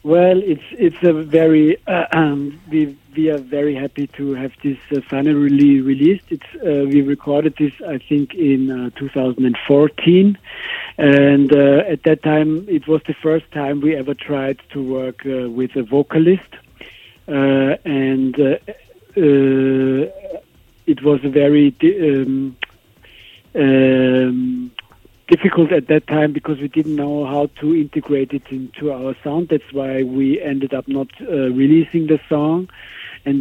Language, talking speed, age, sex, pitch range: Italian, 145 wpm, 50-69, male, 135-155 Hz